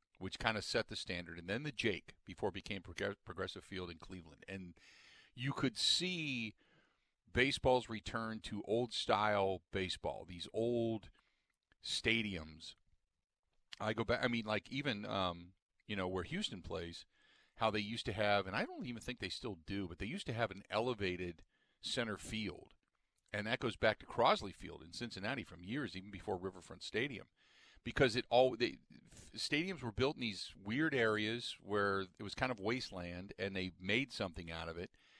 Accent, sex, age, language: American, male, 40-59, English